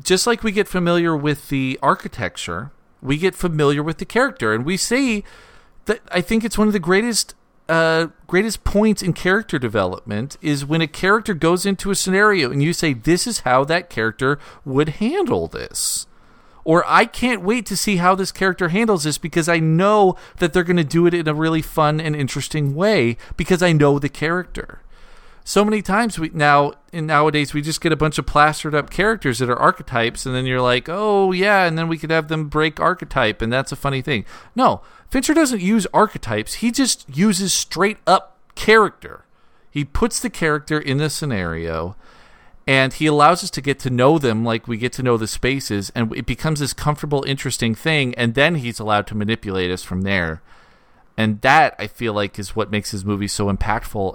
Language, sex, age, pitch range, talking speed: English, male, 40-59, 130-190 Hz, 200 wpm